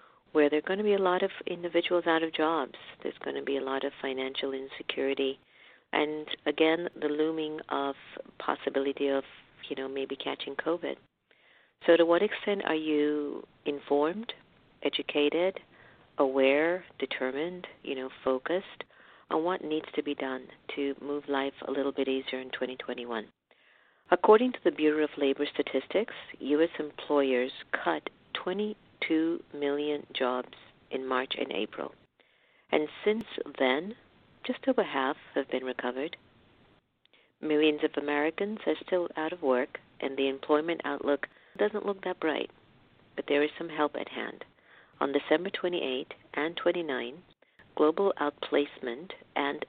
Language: English